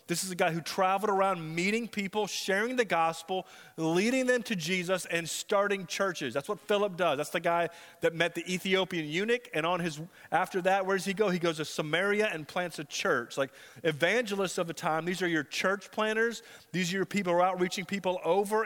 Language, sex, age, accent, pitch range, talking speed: English, male, 30-49, American, 155-200 Hz, 215 wpm